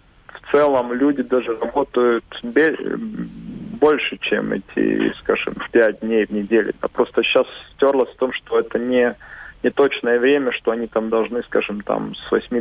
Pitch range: 110-130 Hz